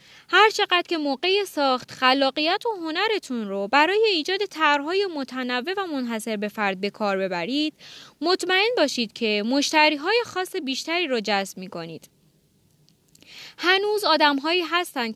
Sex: female